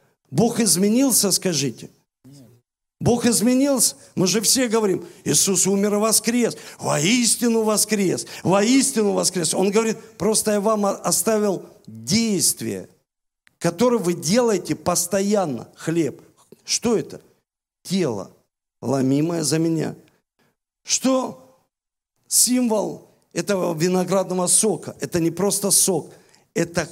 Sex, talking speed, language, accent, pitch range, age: male, 100 wpm, Russian, native, 165-215 Hz, 50-69